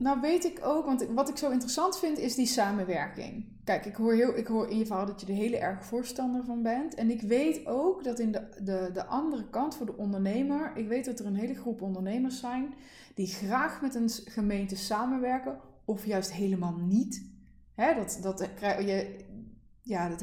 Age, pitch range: 20-39, 205-265 Hz